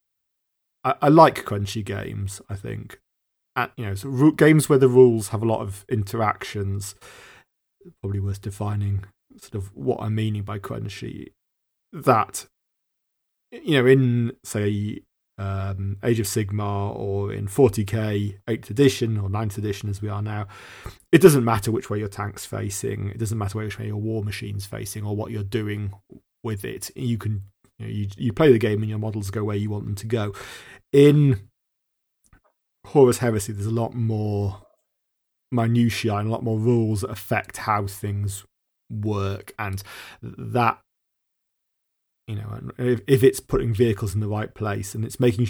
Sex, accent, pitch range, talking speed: male, British, 100-120 Hz, 160 wpm